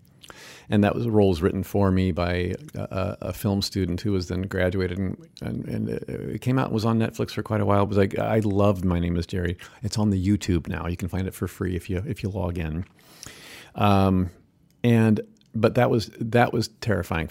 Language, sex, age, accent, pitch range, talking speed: English, male, 50-69, American, 90-110 Hz, 220 wpm